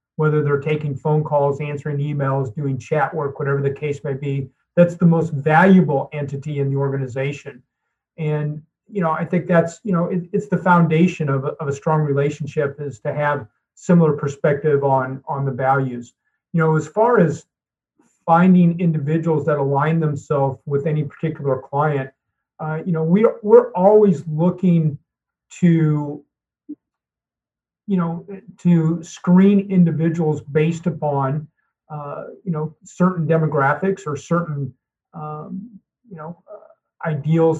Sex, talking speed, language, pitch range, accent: male, 145 wpm, English, 145-170 Hz, American